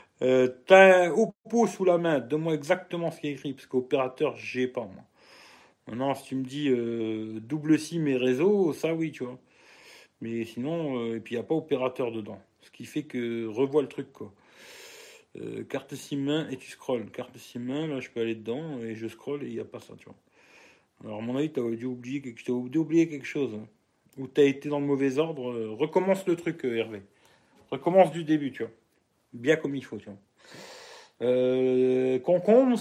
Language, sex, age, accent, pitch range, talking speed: French, male, 40-59, French, 125-170 Hz, 200 wpm